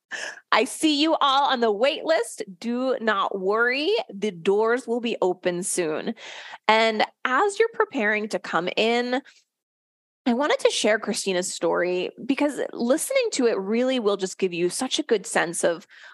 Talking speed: 165 wpm